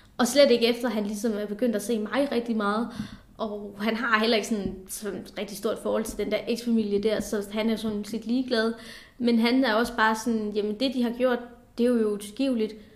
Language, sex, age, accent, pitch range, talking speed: Danish, female, 20-39, native, 220-255 Hz, 230 wpm